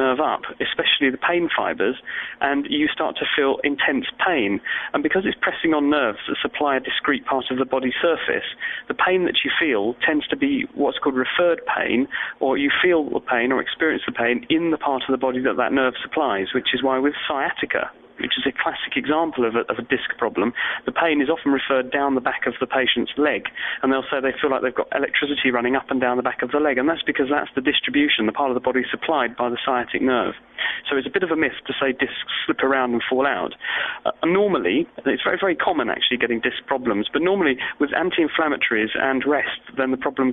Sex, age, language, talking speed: male, 40-59, English, 230 wpm